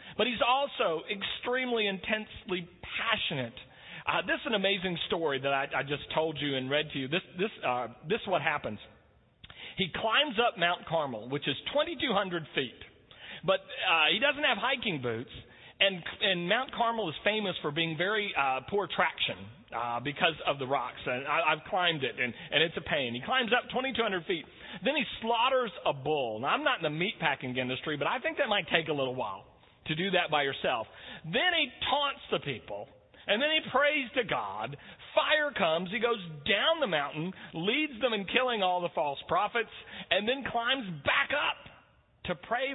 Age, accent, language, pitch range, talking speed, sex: 40-59, American, English, 145-235 Hz, 190 wpm, male